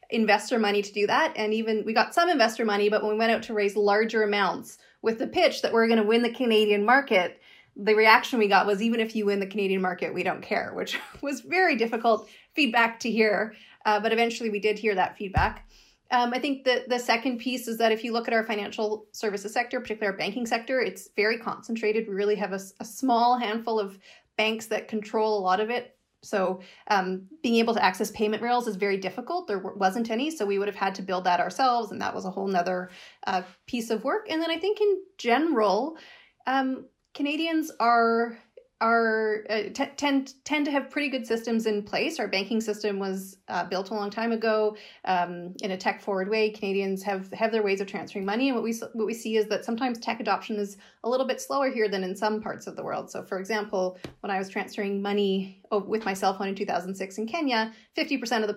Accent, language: American, English